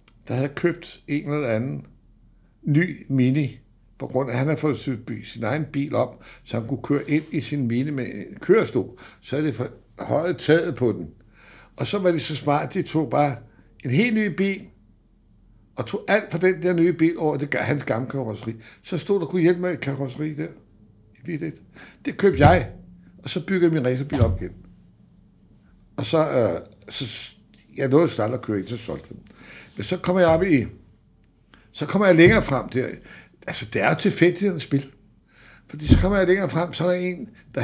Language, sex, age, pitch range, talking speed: Danish, male, 60-79, 110-165 Hz, 200 wpm